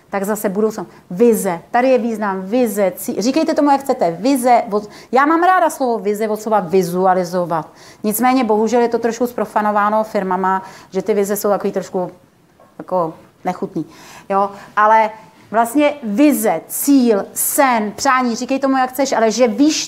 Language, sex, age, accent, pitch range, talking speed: Czech, female, 30-49, native, 210-275 Hz, 155 wpm